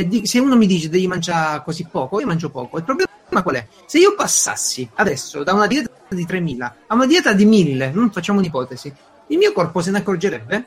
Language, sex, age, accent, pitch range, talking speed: Italian, male, 30-49, native, 165-225 Hz, 215 wpm